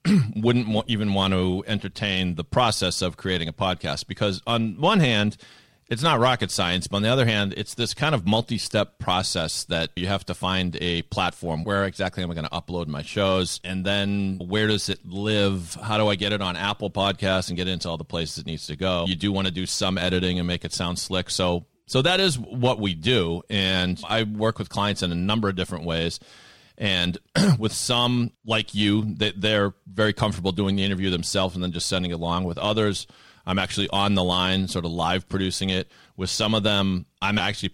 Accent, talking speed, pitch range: American, 220 wpm, 90-110 Hz